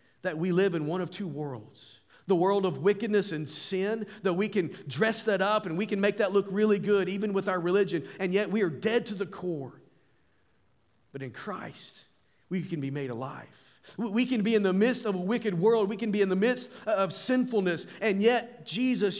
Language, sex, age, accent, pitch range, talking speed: English, male, 40-59, American, 140-210 Hz, 215 wpm